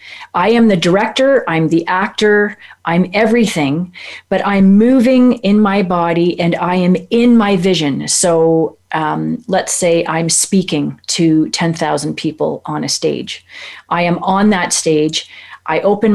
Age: 40-59